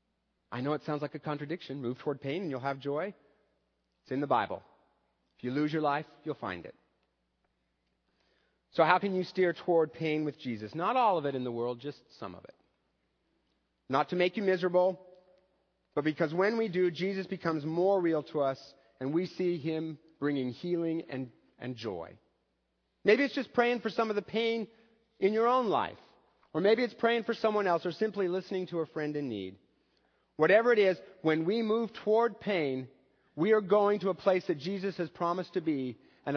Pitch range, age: 135-190 Hz, 40-59